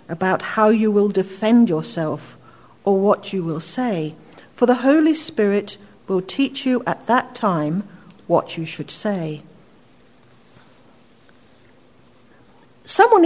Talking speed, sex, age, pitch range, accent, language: 120 wpm, female, 50-69, 180-260 Hz, British, English